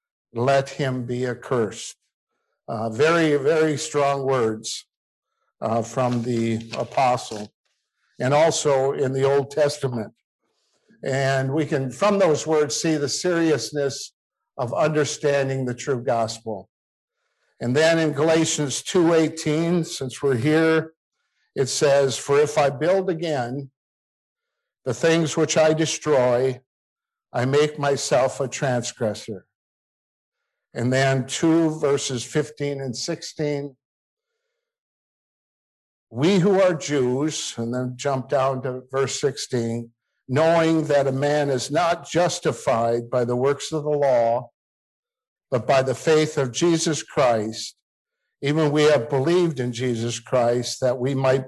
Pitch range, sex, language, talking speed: 125-155 Hz, male, English, 120 wpm